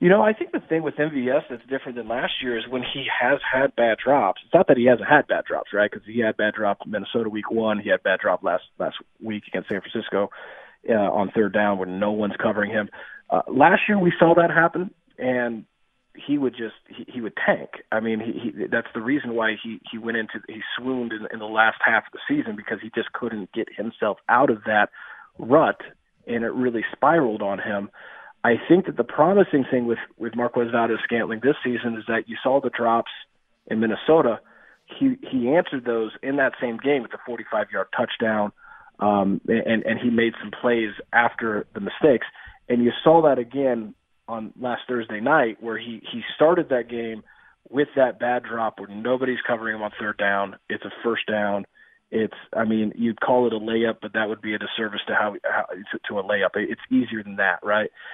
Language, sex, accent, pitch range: English, male, American, 110-130 Hz